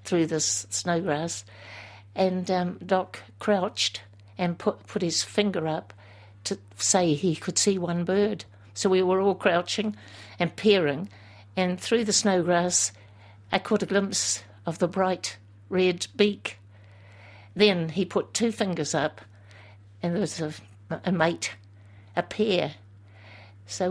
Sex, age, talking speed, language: female, 60-79, 140 wpm, English